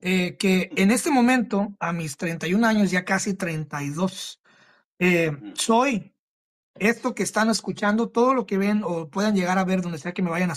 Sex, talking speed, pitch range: male, 185 wpm, 180-225 Hz